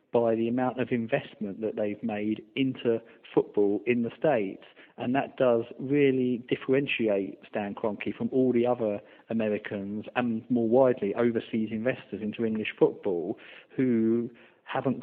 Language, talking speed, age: English, 140 wpm, 40-59